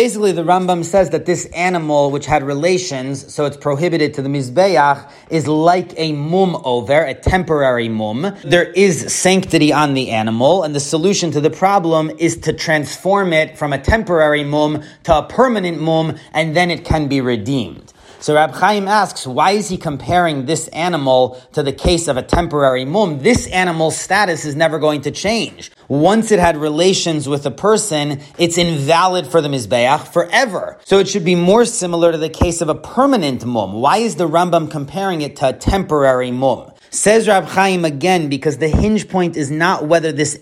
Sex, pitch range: male, 145-180 Hz